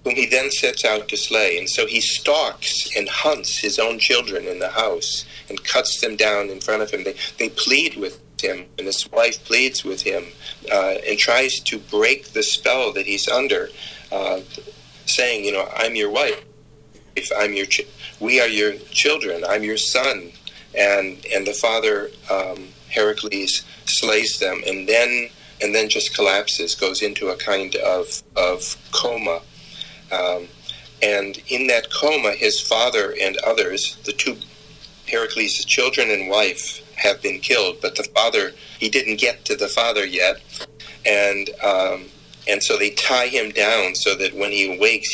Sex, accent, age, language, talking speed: male, American, 40-59, English, 170 wpm